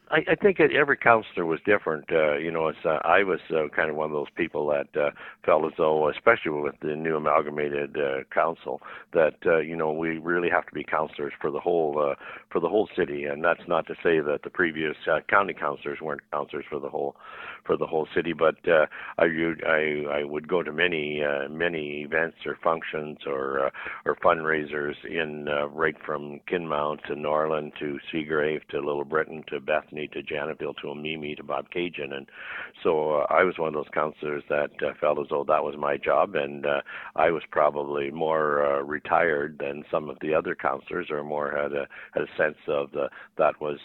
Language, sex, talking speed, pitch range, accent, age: English, male, 210 wpm, 75-80 Hz, American, 60-79